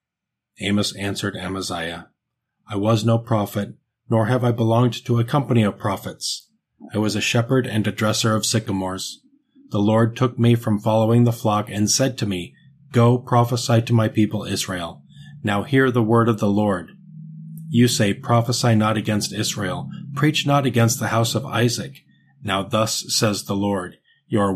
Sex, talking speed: male, 170 wpm